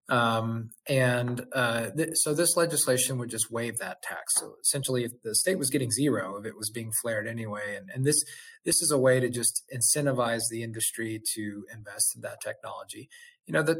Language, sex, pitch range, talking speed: English, male, 115-140 Hz, 195 wpm